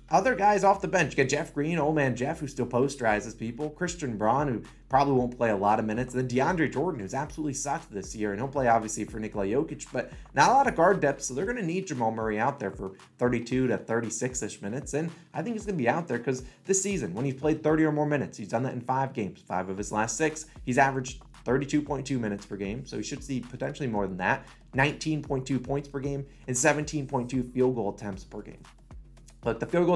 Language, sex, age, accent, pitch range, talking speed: English, male, 20-39, American, 115-145 Hz, 245 wpm